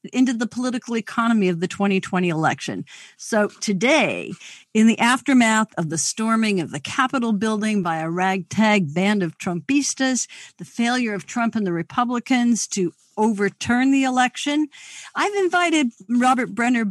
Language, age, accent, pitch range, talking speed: English, 50-69, American, 190-250 Hz, 145 wpm